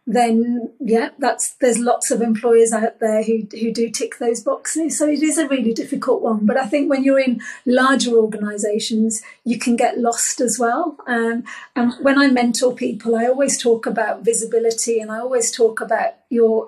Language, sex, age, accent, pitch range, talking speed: English, female, 40-59, British, 230-270 Hz, 190 wpm